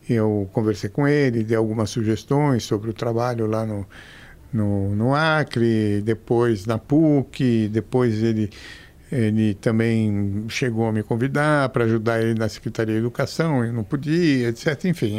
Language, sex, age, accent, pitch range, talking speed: Portuguese, male, 60-79, Brazilian, 110-140 Hz, 150 wpm